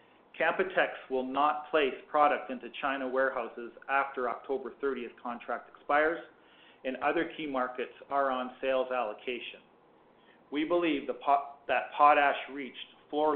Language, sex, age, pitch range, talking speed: English, male, 40-59, 125-150 Hz, 120 wpm